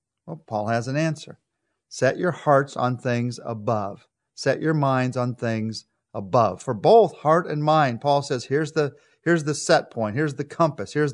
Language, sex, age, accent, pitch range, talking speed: English, male, 50-69, American, 115-155 Hz, 185 wpm